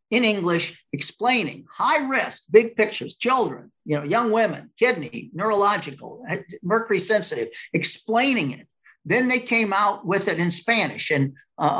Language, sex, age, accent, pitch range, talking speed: English, male, 50-69, American, 160-220 Hz, 140 wpm